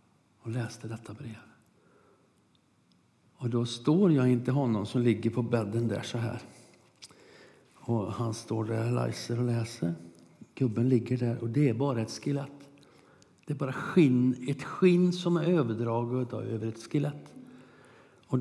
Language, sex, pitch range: Swedish, male, 115-135 Hz